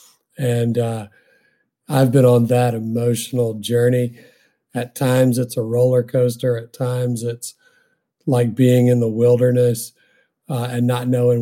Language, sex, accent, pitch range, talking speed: English, male, American, 115-130 Hz, 135 wpm